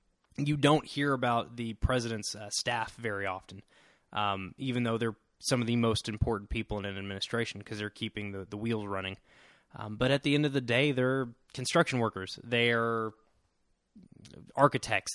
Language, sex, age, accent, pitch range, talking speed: English, male, 20-39, American, 105-125 Hz, 170 wpm